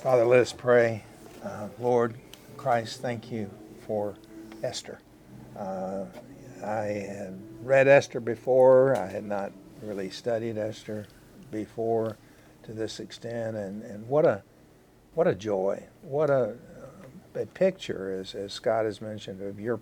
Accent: American